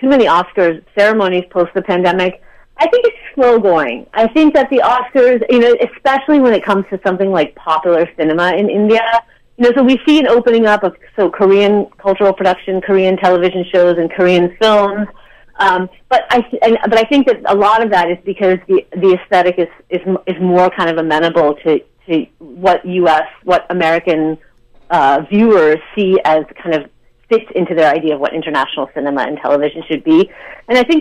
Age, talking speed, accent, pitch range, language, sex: 30-49, 195 wpm, American, 165-220 Hz, English, female